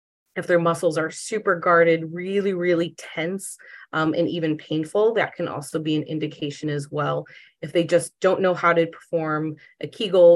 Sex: female